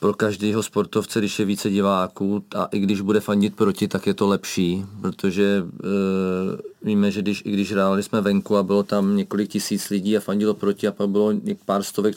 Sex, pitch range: male, 100-115 Hz